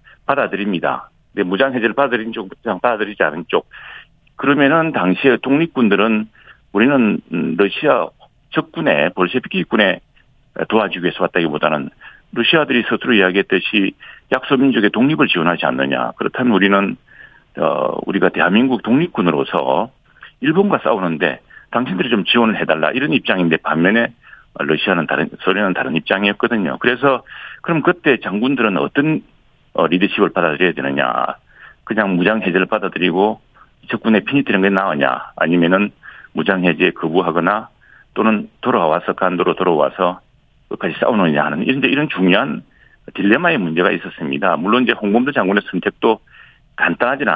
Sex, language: male, Korean